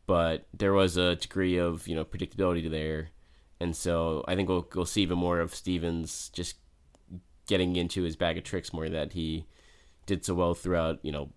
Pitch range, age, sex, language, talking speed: 80-100 Hz, 20-39, male, English, 195 wpm